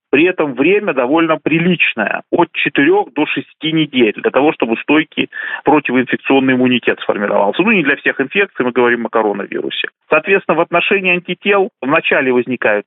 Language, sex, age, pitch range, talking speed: Russian, male, 30-49, 125-180 Hz, 150 wpm